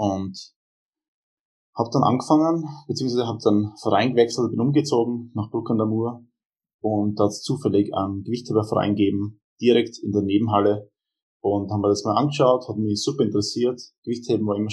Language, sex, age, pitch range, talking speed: German, male, 20-39, 105-120 Hz, 150 wpm